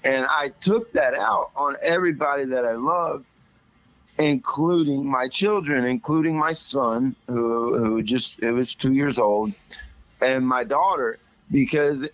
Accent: American